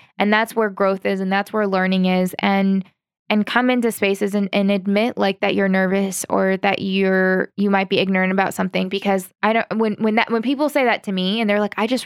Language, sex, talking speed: English, female, 240 wpm